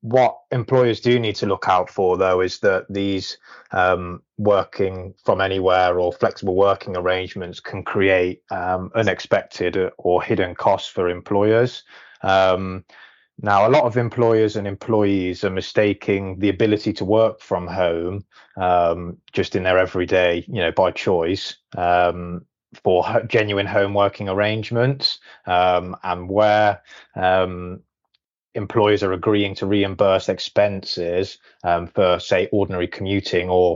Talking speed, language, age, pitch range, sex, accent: 135 wpm, English, 20-39, 90-105 Hz, male, British